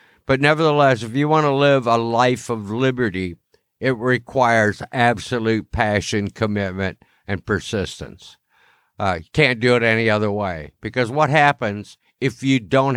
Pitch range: 115-145 Hz